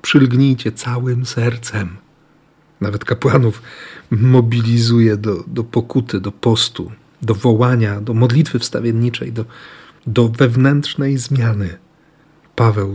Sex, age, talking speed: male, 40-59, 95 wpm